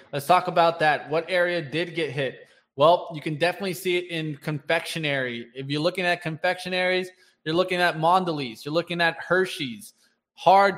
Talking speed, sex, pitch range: 175 wpm, male, 145-175 Hz